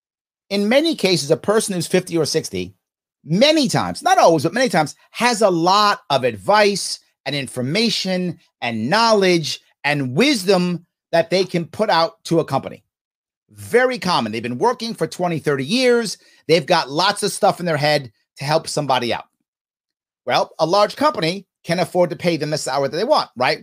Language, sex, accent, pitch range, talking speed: English, male, American, 140-200 Hz, 180 wpm